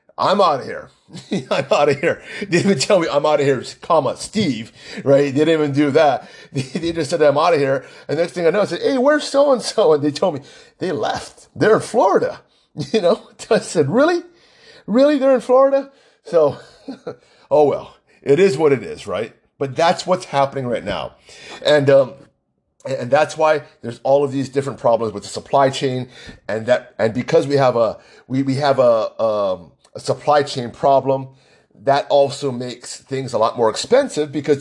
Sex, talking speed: male, 205 wpm